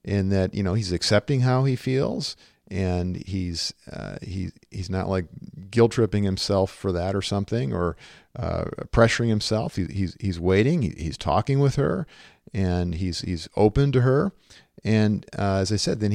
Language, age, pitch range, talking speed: English, 50-69, 95-120 Hz, 175 wpm